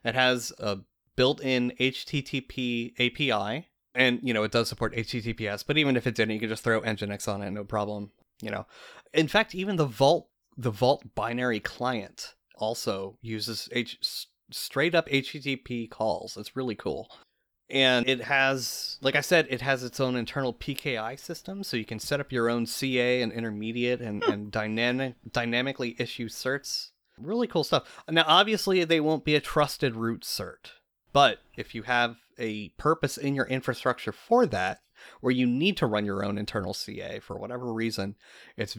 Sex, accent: male, American